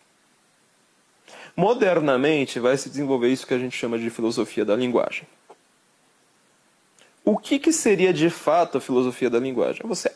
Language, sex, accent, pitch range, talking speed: Portuguese, male, Brazilian, 125-175 Hz, 150 wpm